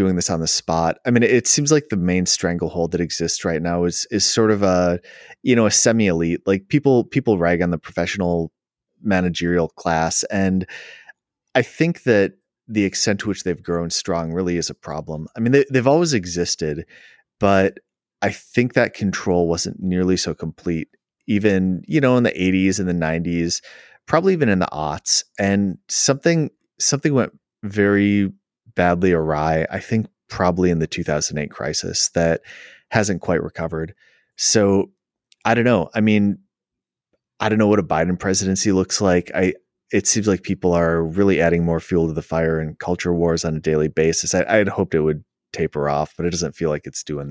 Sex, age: male, 30-49